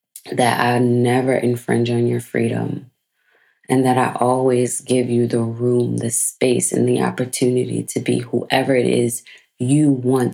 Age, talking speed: 30-49, 155 wpm